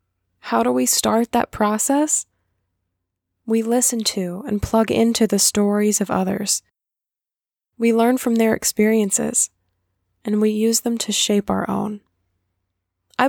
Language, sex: English, female